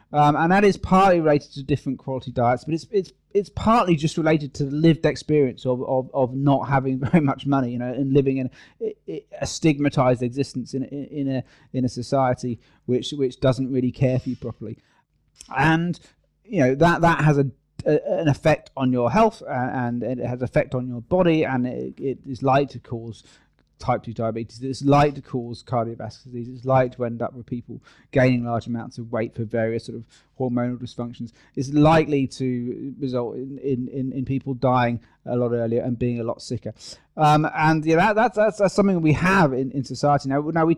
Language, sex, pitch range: English, male, 125-150 Hz